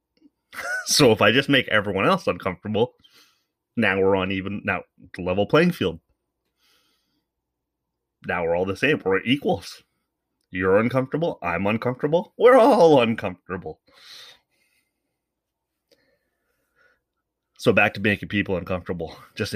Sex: male